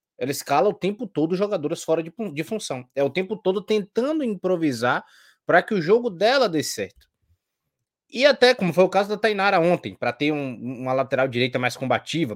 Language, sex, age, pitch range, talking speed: Portuguese, male, 20-39, 130-165 Hz, 190 wpm